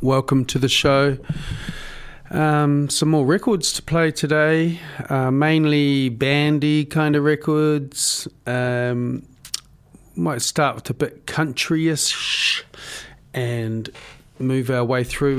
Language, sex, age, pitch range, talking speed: English, male, 40-59, 120-150 Hz, 115 wpm